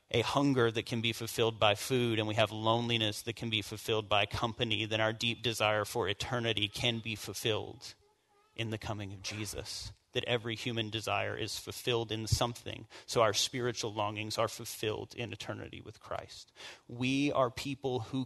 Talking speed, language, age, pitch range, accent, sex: 180 wpm, English, 30-49, 110-125 Hz, American, male